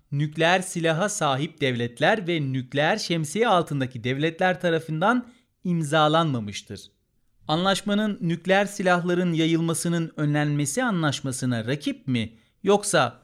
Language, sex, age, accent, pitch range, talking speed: Turkish, male, 40-59, native, 130-185 Hz, 90 wpm